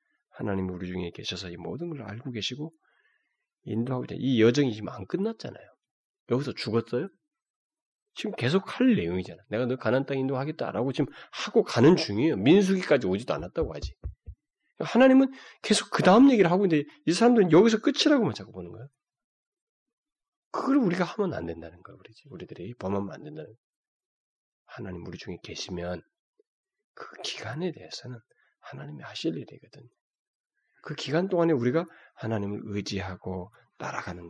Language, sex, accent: Korean, male, native